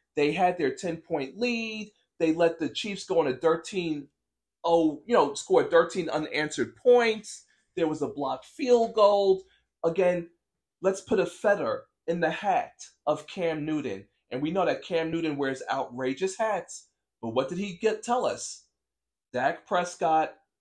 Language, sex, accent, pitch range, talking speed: English, male, American, 150-205 Hz, 160 wpm